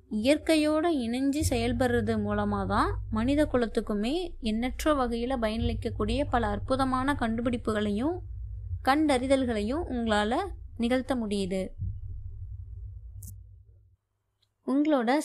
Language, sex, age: Tamil, female, 20-39